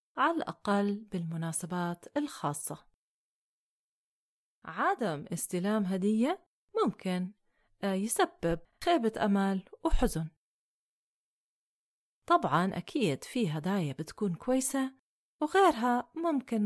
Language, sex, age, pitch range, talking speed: Arabic, female, 30-49, 195-275 Hz, 70 wpm